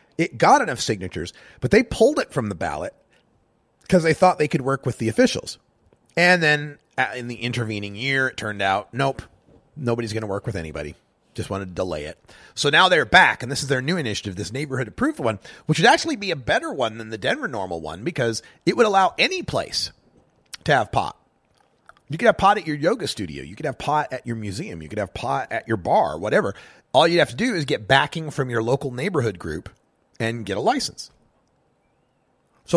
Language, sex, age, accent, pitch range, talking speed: English, male, 30-49, American, 105-160 Hz, 215 wpm